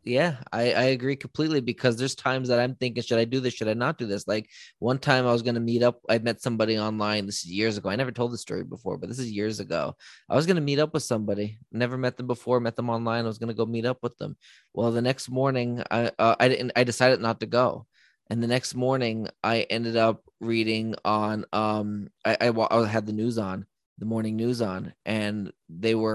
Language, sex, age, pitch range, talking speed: English, male, 20-39, 110-125 Hz, 250 wpm